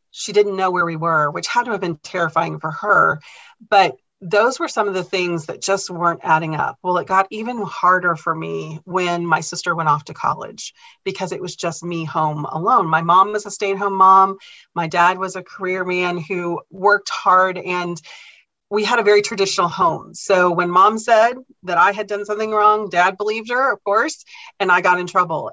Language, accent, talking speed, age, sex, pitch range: English, American, 210 wpm, 40-59, female, 170-205 Hz